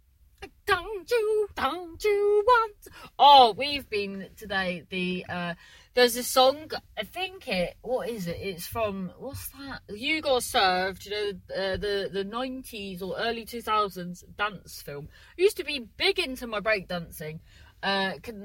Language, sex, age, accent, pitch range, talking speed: English, female, 30-49, British, 175-250 Hz, 160 wpm